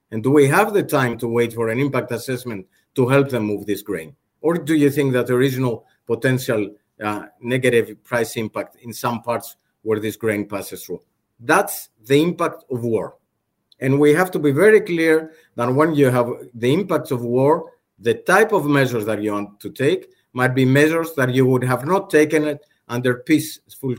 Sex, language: male, English